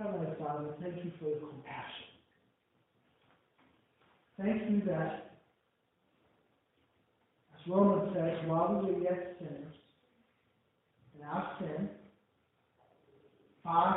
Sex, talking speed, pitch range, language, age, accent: male, 90 wpm, 150-185 Hz, English, 50-69, American